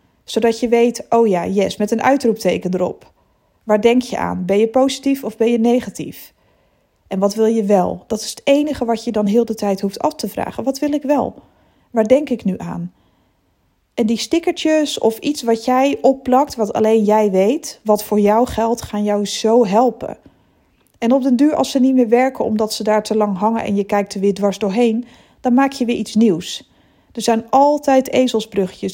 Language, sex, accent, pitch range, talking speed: Dutch, female, Dutch, 205-250 Hz, 210 wpm